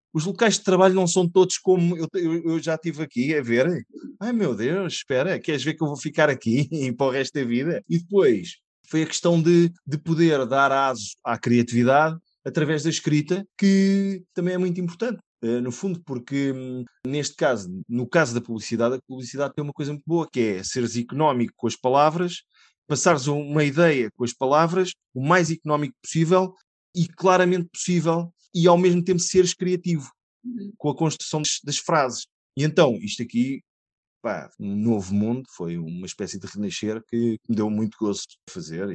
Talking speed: 185 wpm